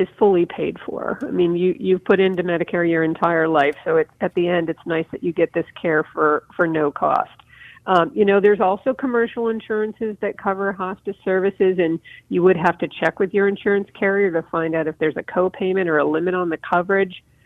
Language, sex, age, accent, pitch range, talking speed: English, female, 50-69, American, 170-210 Hz, 220 wpm